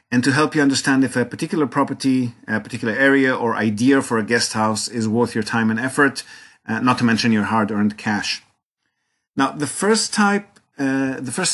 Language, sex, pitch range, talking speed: English, male, 125-155 Hz, 200 wpm